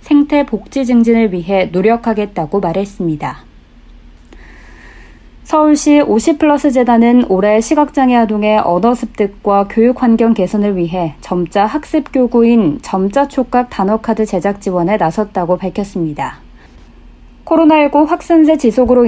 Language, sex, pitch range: Korean, female, 190-255 Hz